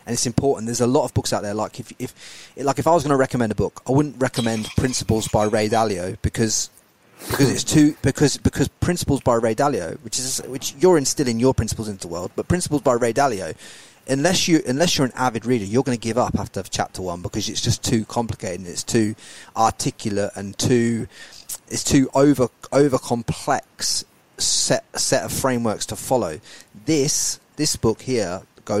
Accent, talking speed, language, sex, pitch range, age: British, 200 wpm, English, male, 110-130 Hz, 30-49